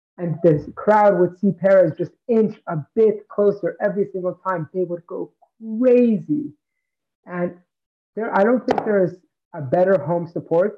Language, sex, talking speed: English, male, 160 wpm